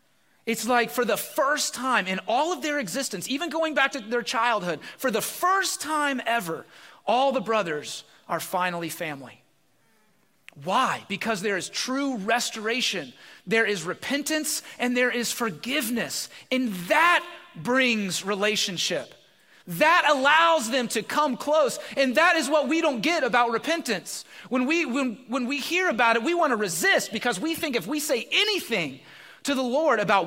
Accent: American